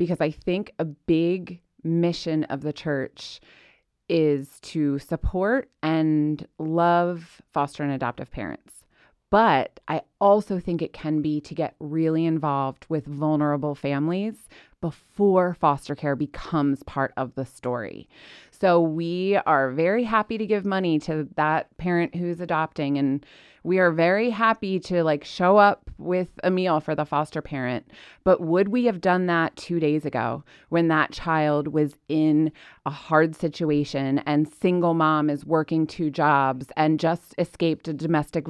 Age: 30-49